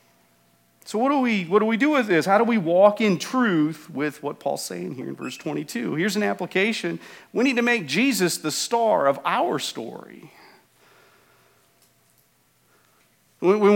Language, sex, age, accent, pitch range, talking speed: English, male, 40-59, American, 135-205 Hz, 165 wpm